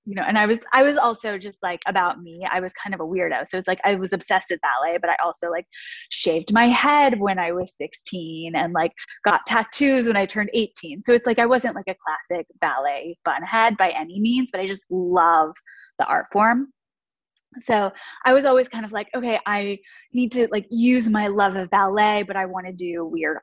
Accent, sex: American, female